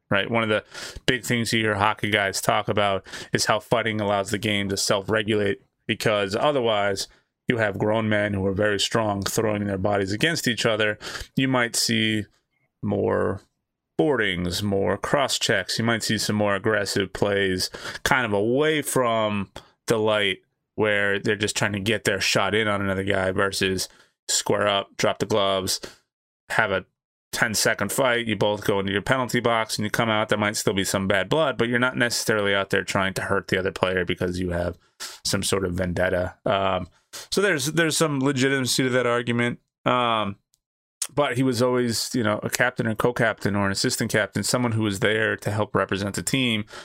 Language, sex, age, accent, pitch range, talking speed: English, male, 20-39, American, 100-120 Hz, 190 wpm